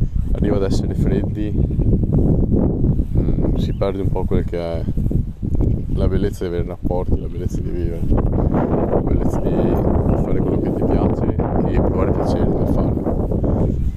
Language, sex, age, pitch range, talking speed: Italian, male, 20-39, 85-105 Hz, 150 wpm